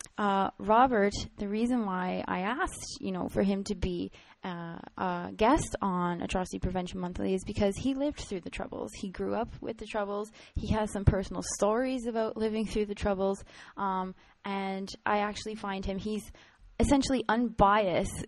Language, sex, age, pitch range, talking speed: English, female, 20-39, 185-210 Hz, 170 wpm